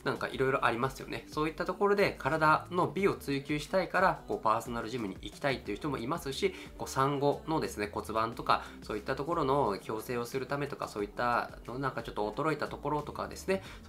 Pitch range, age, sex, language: 115-160 Hz, 20-39, male, Japanese